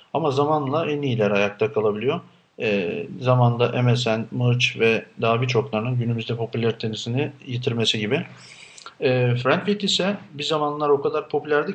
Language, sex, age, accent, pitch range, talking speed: Turkish, male, 50-69, native, 110-140 Hz, 135 wpm